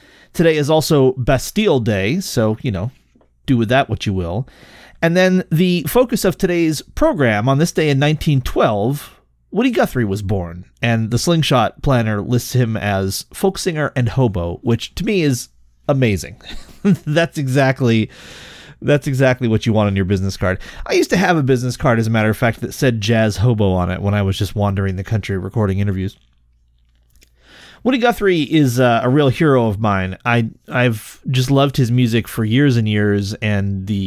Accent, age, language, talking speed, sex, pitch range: American, 30-49, English, 185 wpm, male, 100-135 Hz